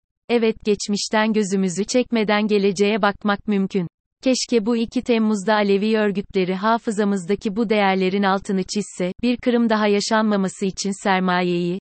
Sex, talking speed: female, 120 wpm